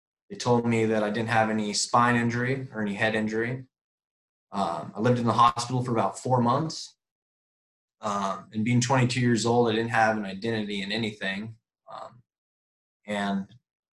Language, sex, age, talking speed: English, male, 20-39, 170 wpm